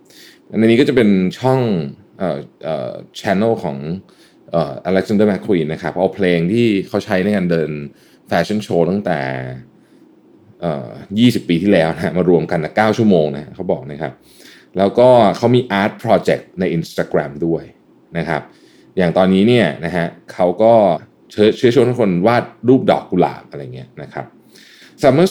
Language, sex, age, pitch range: Thai, male, 20-39, 85-125 Hz